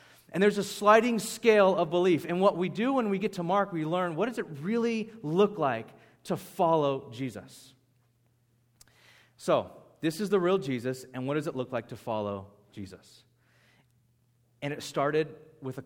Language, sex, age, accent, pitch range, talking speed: English, male, 30-49, American, 120-180 Hz, 180 wpm